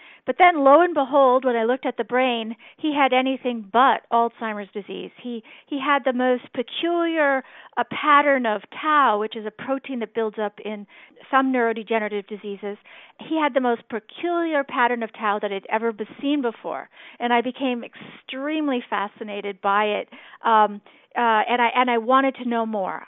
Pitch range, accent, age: 220-265 Hz, American, 50-69